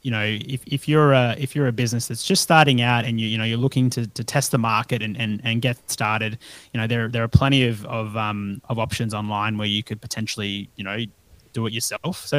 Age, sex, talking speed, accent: 20-39, male, 250 wpm, Australian